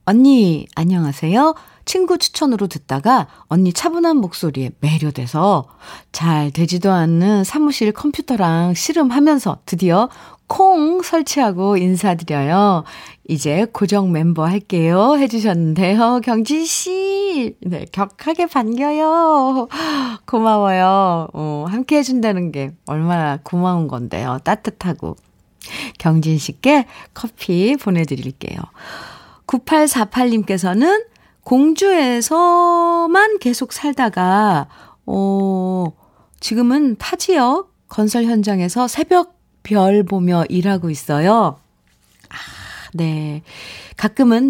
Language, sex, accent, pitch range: Korean, female, native, 170-265 Hz